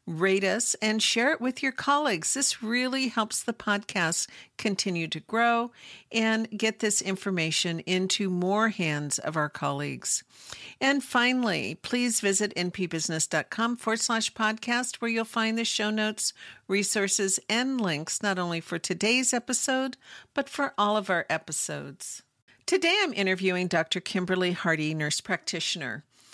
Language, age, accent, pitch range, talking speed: English, 50-69, American, 180-235 Hz, 140 wpm